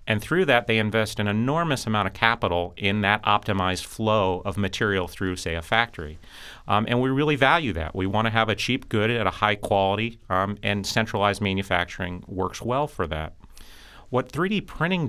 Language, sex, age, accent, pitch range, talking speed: English, male, 40-59, American, 95-120 Hz, 190 wpm